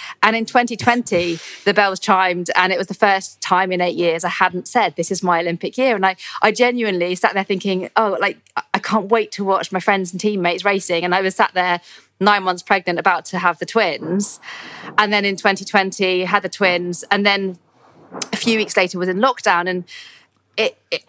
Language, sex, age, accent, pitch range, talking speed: English, female, 20-39, British, 175-210 Hz, 210 wpm